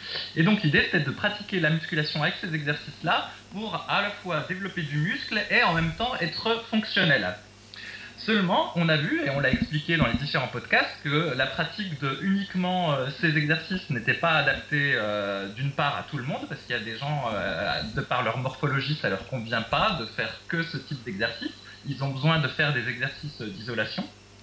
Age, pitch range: 20-39, 135-180 Hz